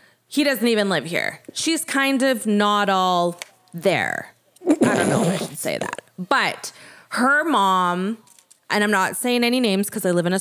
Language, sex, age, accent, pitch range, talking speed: English, female, 20-39, American, 195-260 Hz, 190 wpm